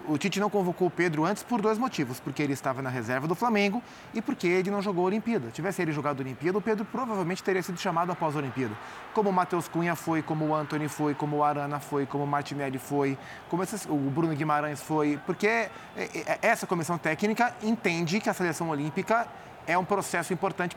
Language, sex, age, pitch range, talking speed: Portuguese, male, 20-39, 150-210 Hz, 215 wpm